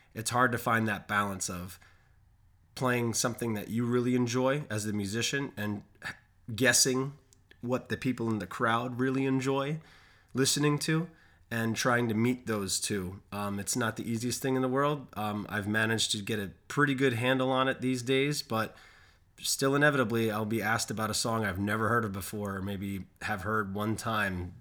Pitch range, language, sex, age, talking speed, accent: 100-125 Hz, English, male, 20-39, 185 wpm, American